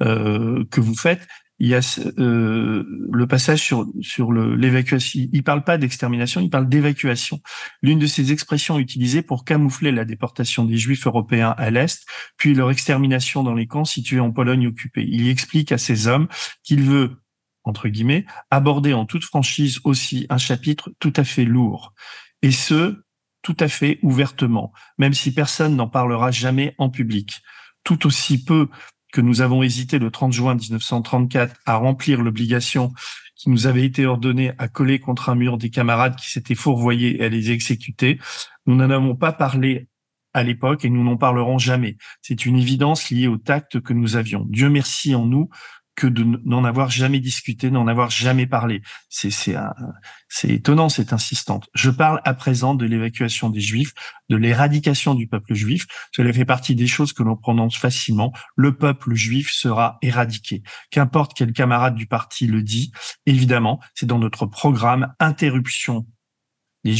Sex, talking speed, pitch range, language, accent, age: male, 175 wpm, 120-140 Hz, French, French, 40-59